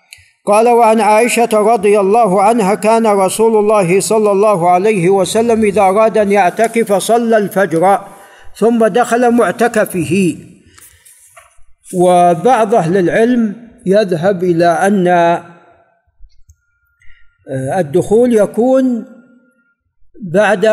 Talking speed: 90 wpm